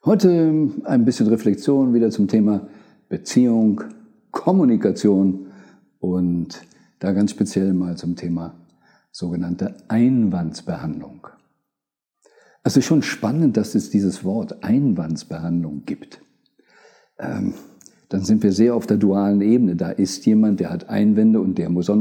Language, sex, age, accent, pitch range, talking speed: German, male, 50-69, German, 100-155 Hz, 130 wpm